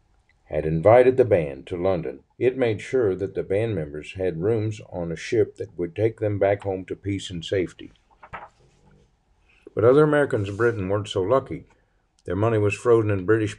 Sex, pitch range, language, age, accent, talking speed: male, 95-115 Hz, English, 50-69, American, 185 wpm